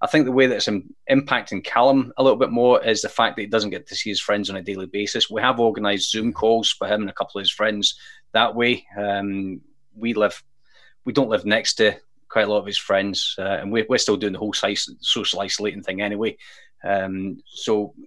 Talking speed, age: 230 wpm, 30-49